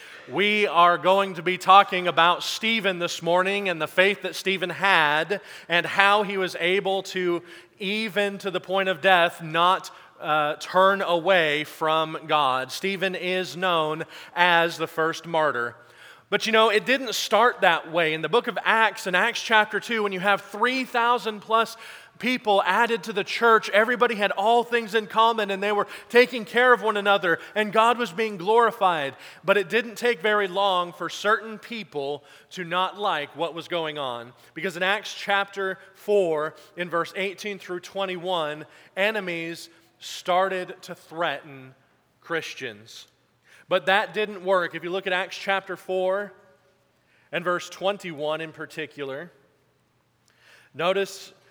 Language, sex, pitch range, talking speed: English, male, 170-205 Hz, 155 wpm